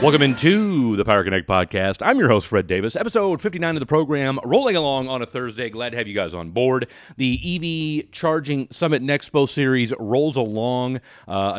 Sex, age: male, 30-49